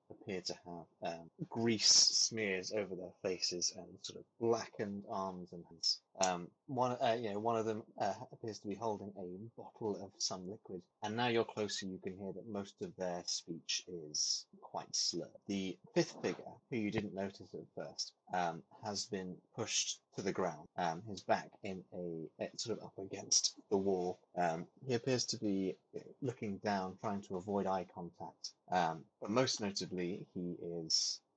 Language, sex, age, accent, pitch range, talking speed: English, male, 30-49, British, 90-105 Hz, 180 wpm